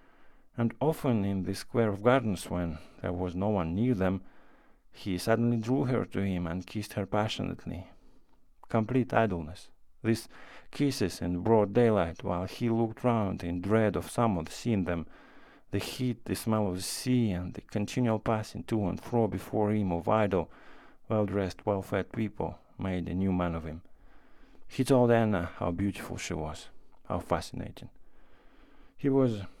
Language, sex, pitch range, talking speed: English, male, 90-115 Hz, 165 wpm